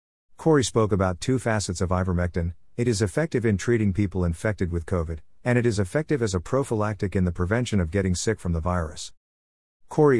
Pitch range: 90-115 Hz